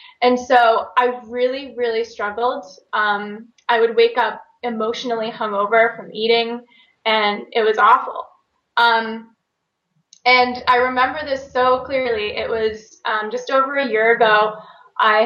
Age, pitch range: 20-39, 220-250 Hz